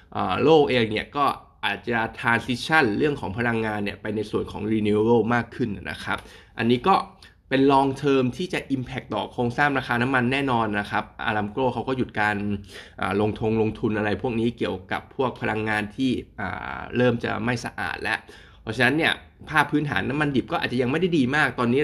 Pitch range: 105-130 Hz